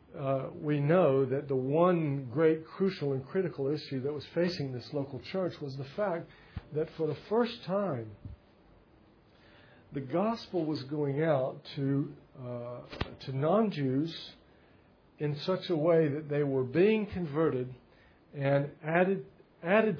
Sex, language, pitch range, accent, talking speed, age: male, English, 135-170 Hz, American, 140 wpm, 60-79